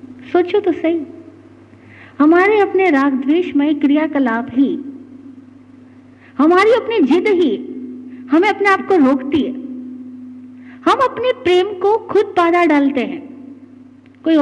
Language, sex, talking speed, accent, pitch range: Hindi, female, 115 wpm, native, 255-370 Hz